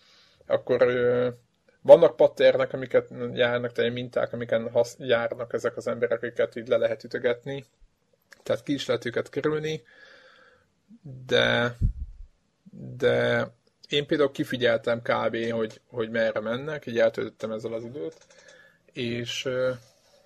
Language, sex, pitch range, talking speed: Hungarian, male, 115-175 Hz, 120 wpm